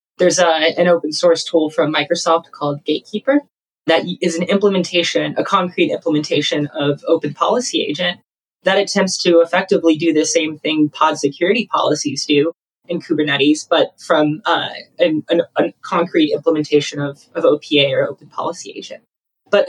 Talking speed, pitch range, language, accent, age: 160 wpm, 155-195 Hz, English, American, 20-39